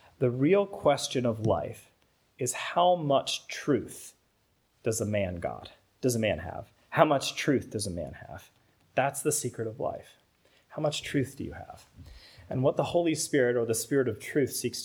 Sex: male